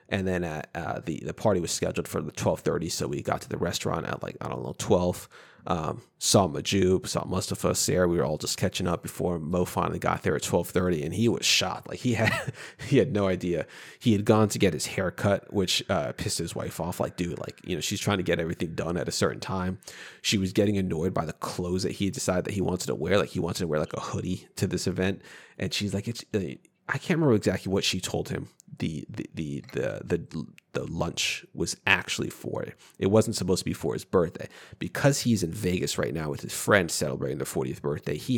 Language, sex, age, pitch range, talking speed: English, male, 30-49, 90-105 Hz, 245 wpm